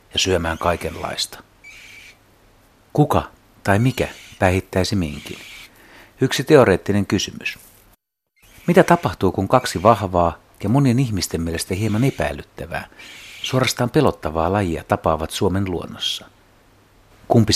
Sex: male